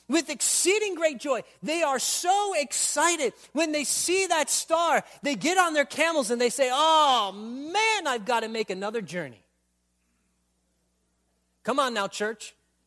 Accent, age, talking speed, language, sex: American, 40-59, 155 wpm, English, male